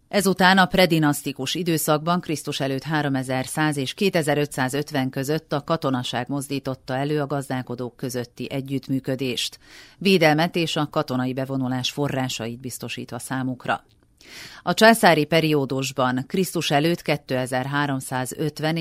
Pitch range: 130-155 Hz